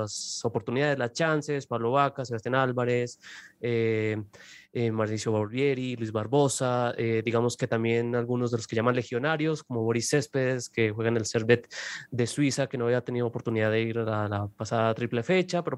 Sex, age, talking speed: male, 20-39, 185 wpm